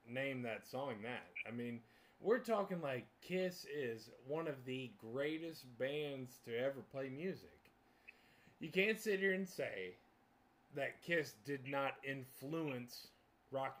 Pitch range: 130-180 Hz